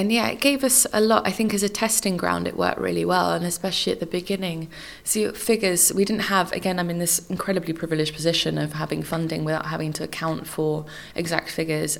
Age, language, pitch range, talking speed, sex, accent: 20-39, English, 160-185 Hz, 220 wpm, female, British